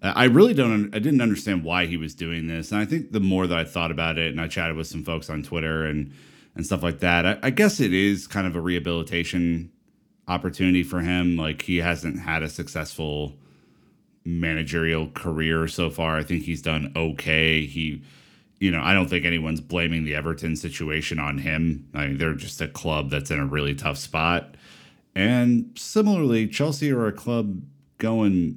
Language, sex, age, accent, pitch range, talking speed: English, male, 30-49, American, 80-95 Hz, 195 wpm